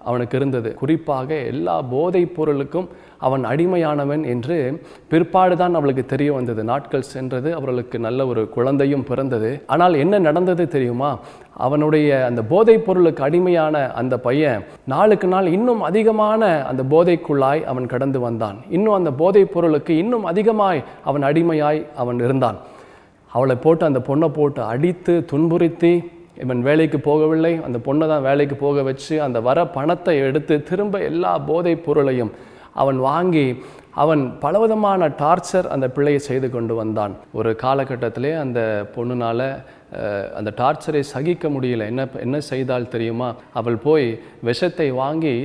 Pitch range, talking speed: 125-165 Hz, 135 wpm